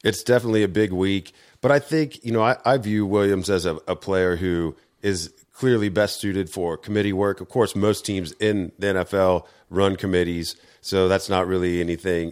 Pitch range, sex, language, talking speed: 85-100 Hz, male, English, 195 wpm